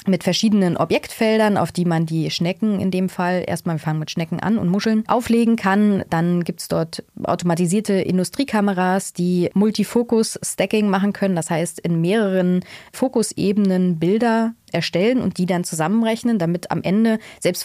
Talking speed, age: 155 wpm, 20-39